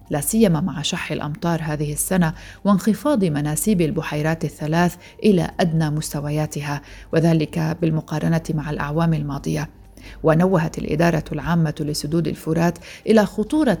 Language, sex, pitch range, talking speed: Arabic, female, 155-185 Hz, 115 wpm